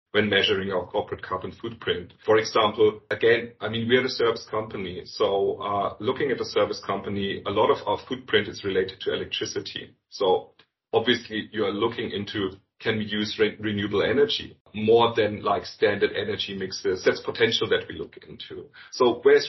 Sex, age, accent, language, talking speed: male, 40-59, German, English, 180 wpm